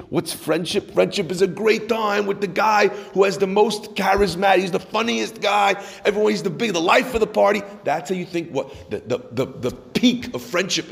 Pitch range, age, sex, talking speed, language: 165-215 Hz, 40-59, male, 210 wpm, English